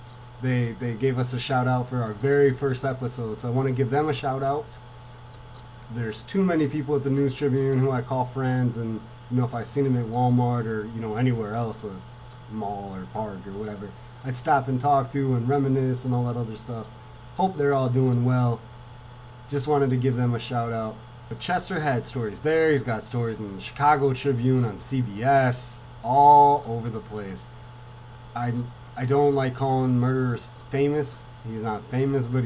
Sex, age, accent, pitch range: male, 30-49, American, 115-130 Hz